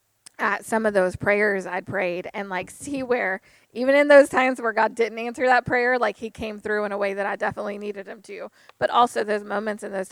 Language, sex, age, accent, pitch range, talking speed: English, female, 20-39, American, 195-230 Hz, 235 wpm